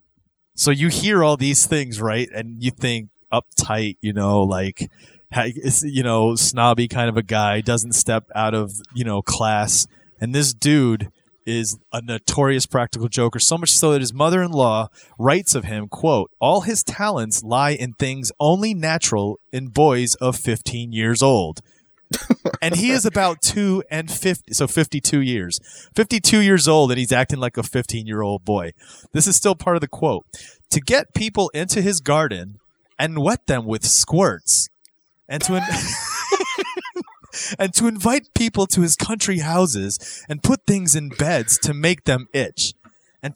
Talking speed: 165 wpm